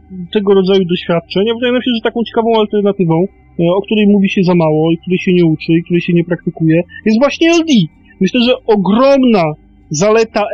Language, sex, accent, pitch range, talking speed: Polish, male, native, 175-220 Hz, 195 wpm